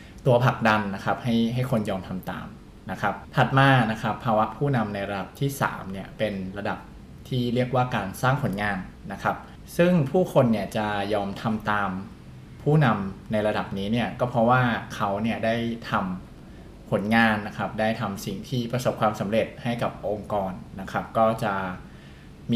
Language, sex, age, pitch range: Thai, male, 20-39, 100-125 Hz